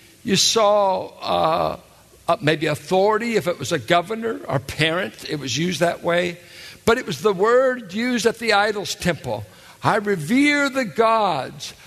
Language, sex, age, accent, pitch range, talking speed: English, male, 60-79, American, 165-225 Hz, 160 wpm